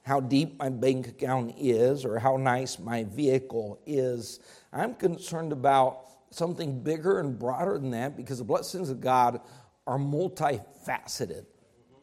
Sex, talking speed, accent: male, 140 wpm, American